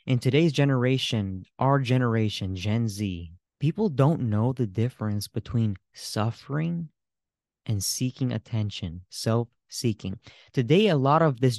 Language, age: English, 20-39